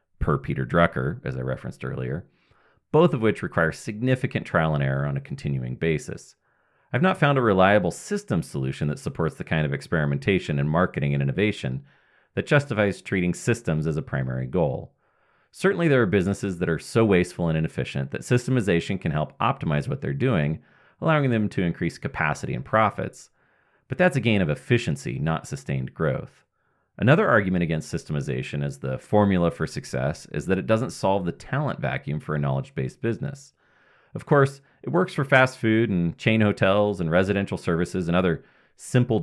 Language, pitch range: English, 75-115 Hz